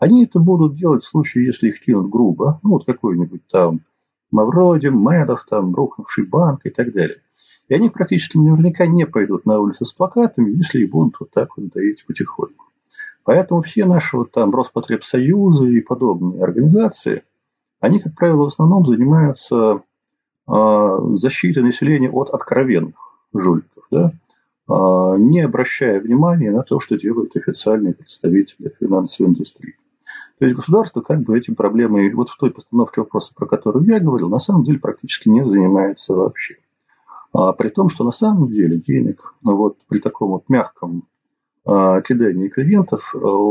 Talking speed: 160 wpm